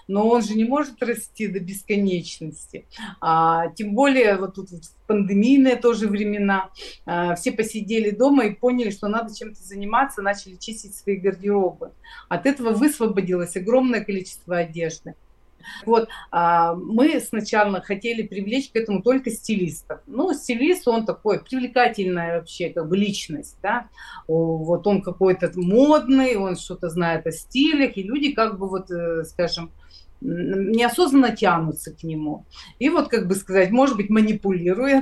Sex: female